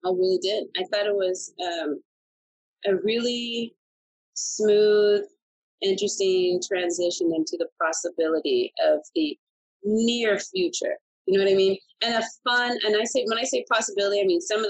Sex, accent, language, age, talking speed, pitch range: female, American, English, 30-49, 160 wpm, 175-290 Hz